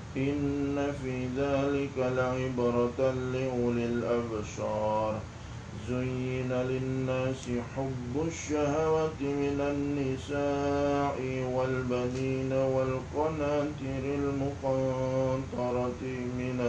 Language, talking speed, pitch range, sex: Indonesian, 60 wpm, 125-140 Hz, male